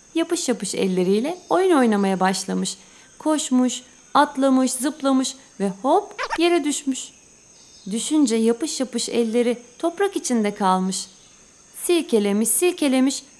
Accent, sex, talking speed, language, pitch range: native, female, 100 wpm, Turkish, 225-295 Hz